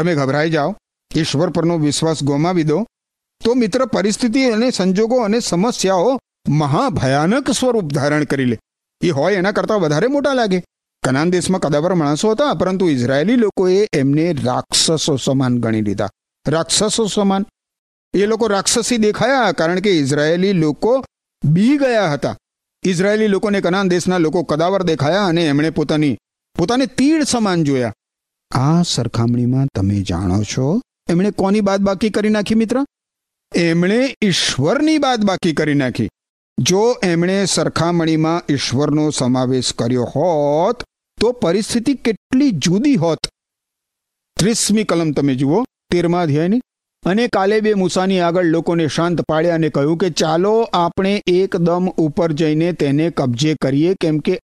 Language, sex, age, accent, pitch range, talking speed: Gujarati, male, 50-69, native, 145-205 Hz, 75 wpm